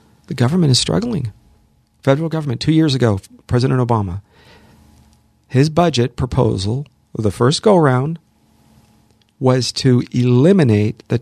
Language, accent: English, American